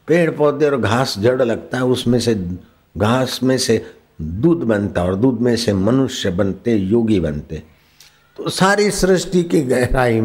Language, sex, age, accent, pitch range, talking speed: Hindi, male, 60-79, native, 115-165 Hz, 170 wpm